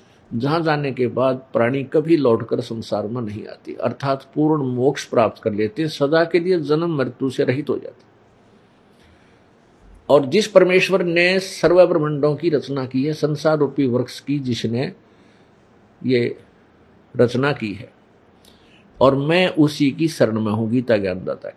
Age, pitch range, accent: 50-69, 125-165 Hz, native